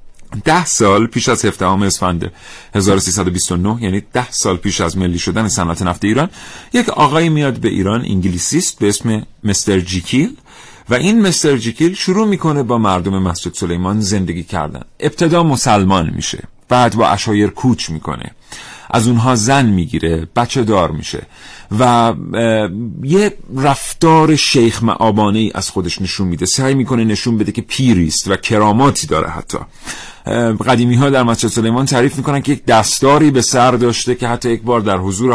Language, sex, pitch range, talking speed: Persian, male, 95-130 Hz, 160 wpm